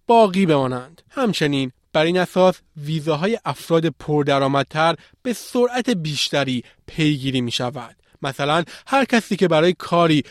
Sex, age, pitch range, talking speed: male, 30-49, 140-185 Hz, 120 wpm